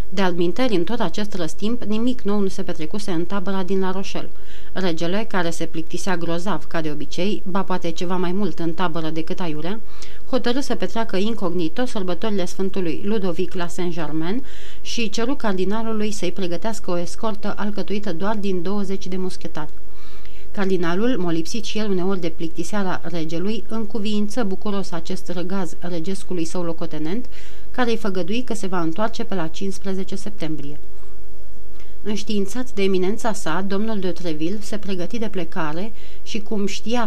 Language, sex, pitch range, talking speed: Romanian, female, 175-210 Hz, 150 wpm